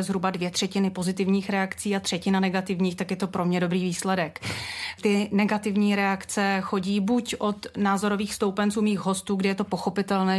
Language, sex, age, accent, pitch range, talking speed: Czech, female, 30-49, native, 185-210 Hz, 170 wpm